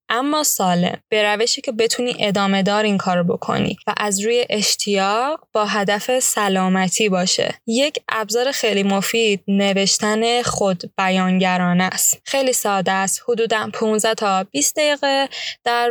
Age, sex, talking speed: 10-29, female, 130 wpm